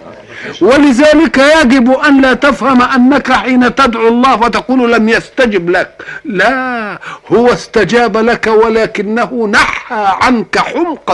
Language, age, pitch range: Arabic, 50-69, 215-275 Hz